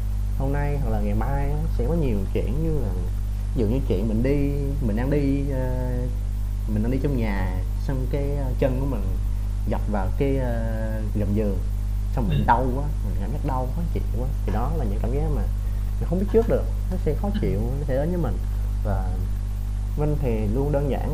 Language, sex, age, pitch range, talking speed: Vietnamese, male, 20-39, 100-125 Hz, 205 wpm